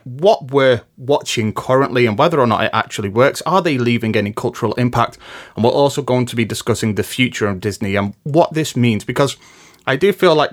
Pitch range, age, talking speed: 115-140 Hz, 30-49, 210 wpm